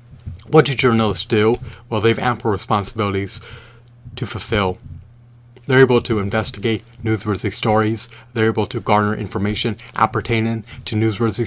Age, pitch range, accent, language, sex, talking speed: 30-49, 105-120 Hz, American, English, male, 130 wpm